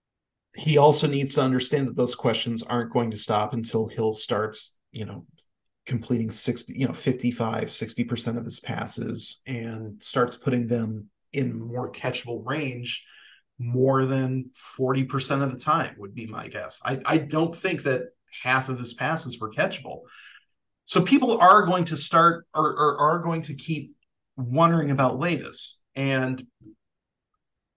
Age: 40-59